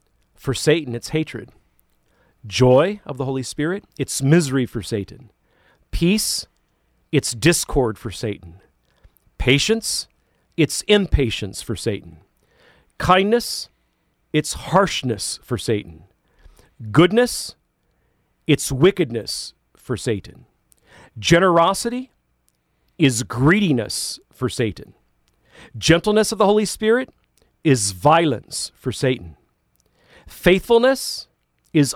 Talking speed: 90 wpm